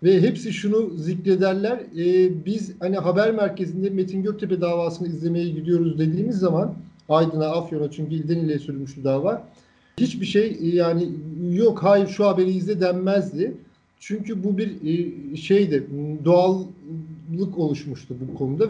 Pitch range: 155-205 Hz